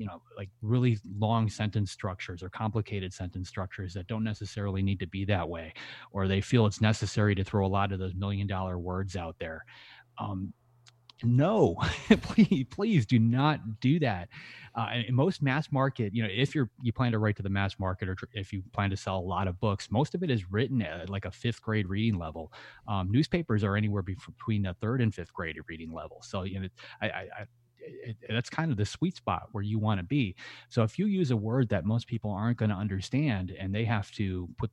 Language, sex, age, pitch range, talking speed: English, male, 30-49, 95-120 Hz, 230 wpm